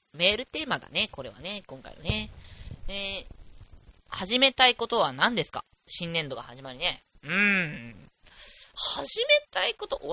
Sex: female